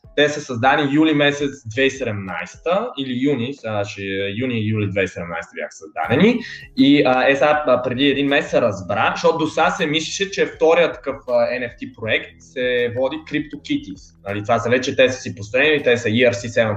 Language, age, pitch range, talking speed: Bulgarian, 20-39, 115-145 Hz, 165 wpm